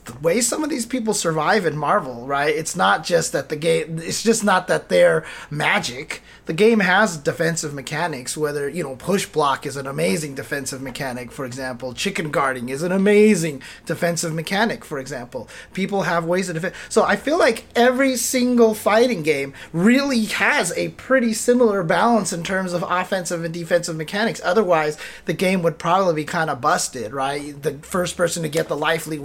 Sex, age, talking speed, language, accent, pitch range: male, 30-49, 190 wpm, English, American, 155-220 Hz